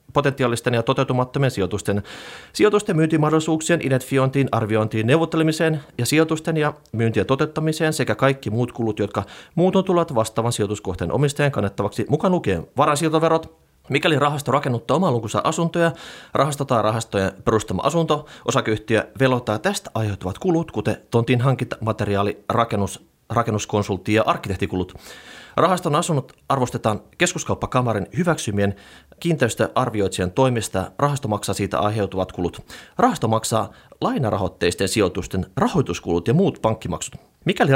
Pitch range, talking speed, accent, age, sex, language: 105-150 Hz, 110 wpm, native, 30-49, male, Finnish